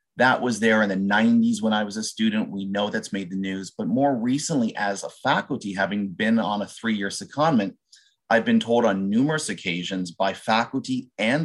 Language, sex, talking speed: English, male, 205 wpm